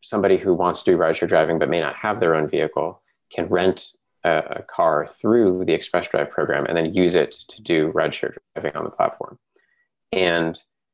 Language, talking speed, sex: English, 195 wpm, male